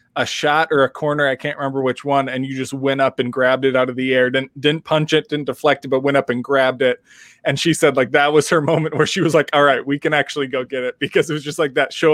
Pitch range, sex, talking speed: 130-150 Hz, male, 305 wpm